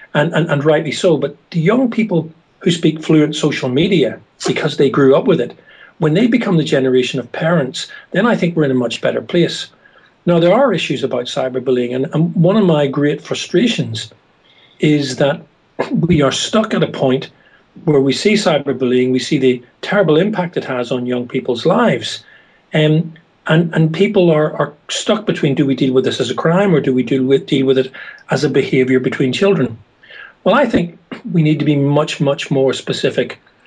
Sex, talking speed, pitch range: male, 200 wpm, 130-175 Hz